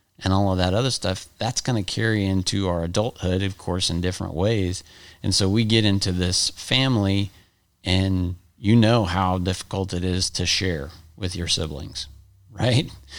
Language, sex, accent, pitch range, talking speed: English, male, American, 90-105 Hz, 175 wpm